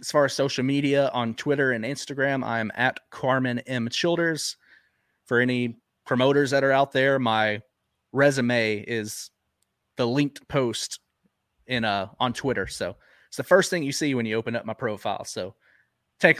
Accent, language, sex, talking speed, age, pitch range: American, English, male, 170 wpm, 30-49, 125-150 Hz